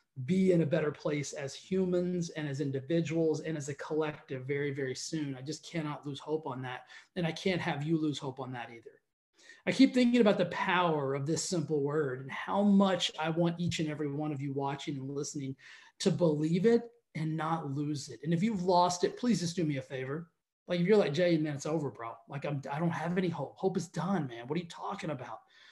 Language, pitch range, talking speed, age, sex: English, 145-190 Hz, 235 wpm, 30-49, male